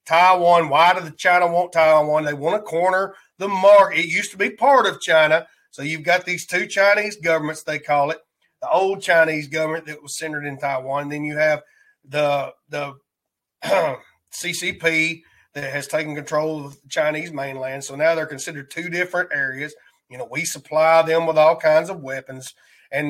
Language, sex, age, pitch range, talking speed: English, male, 30-49, 155-210 Hz, 185 wpm